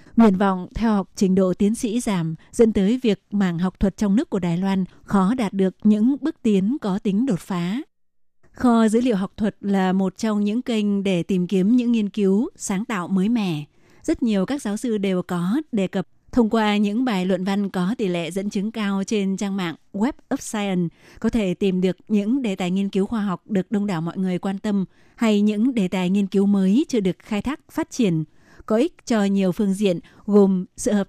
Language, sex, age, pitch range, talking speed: Vietnamese, female, 20-39, 190-225 Hz, 225 wpm